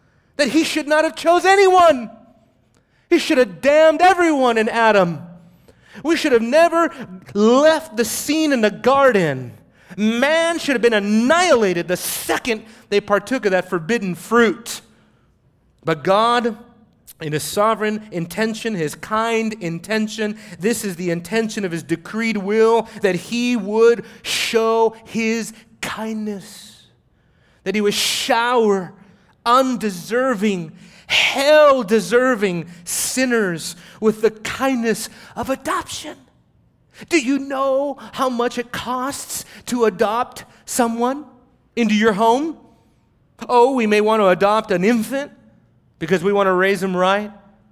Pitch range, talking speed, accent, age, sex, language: 190-240 Hz, 125 wpm, American, 30-49, male, English